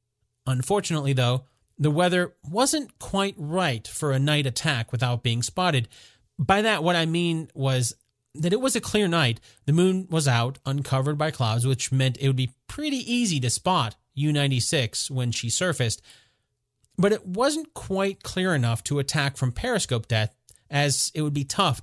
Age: 30-49